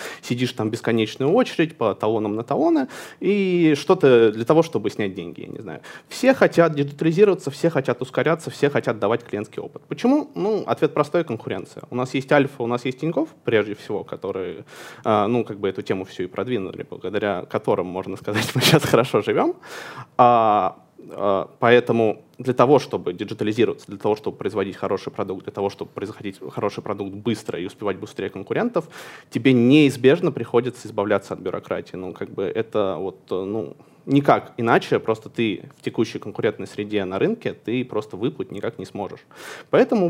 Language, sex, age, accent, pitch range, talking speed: Russian, male, 20-39, native, 105-150 Hz, 170 wpm